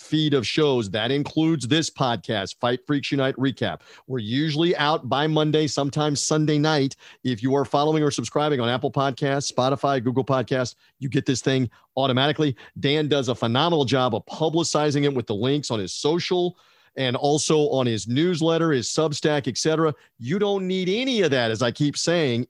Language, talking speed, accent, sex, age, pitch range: English, 180 wpm, American, male, 40-59, 130-160 Hz